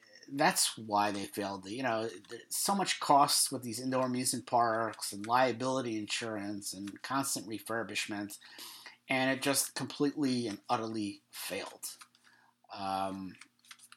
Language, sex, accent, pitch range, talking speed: English, male, American, 105-140 Hz, 120 wpm